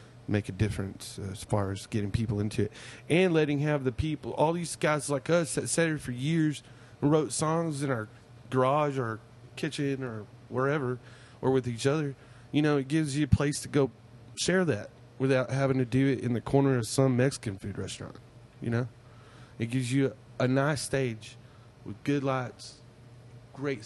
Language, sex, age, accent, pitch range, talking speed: English, male, 30-49, American, 115-140 Hz, 185 wpm